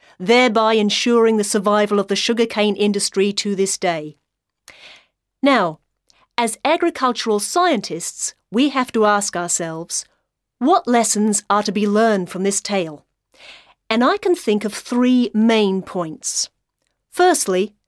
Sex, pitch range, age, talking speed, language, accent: female, 195-245 Hz, 40-59, 130 wpm, English, British